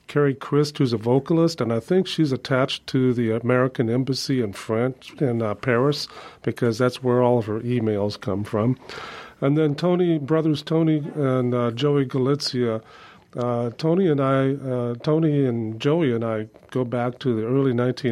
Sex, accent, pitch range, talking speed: male, American, 115-140 Hz, 170 wpm